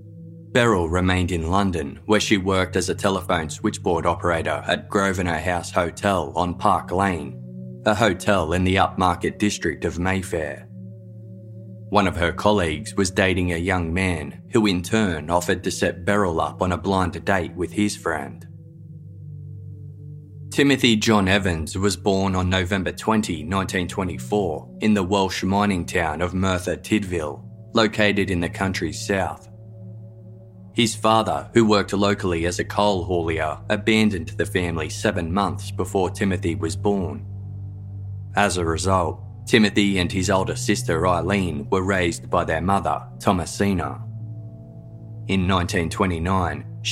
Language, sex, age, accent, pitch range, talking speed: English, male, 20-39, Australian, 90-105 Hz, 140 wpm